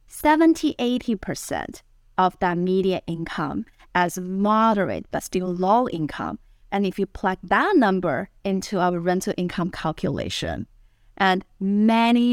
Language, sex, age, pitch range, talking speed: English, female, 30-49, 170-210 Hz, 120 wpm